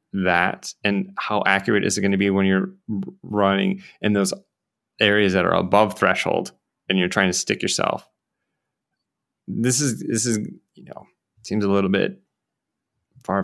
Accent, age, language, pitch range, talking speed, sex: American, 20-39, English, 95-115 Hz, 160 wpm, male